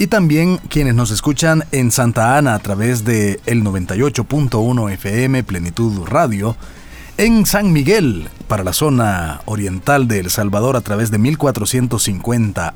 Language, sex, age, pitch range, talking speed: Spanish, male, 40-59, 110-150 Hz, 140 wpm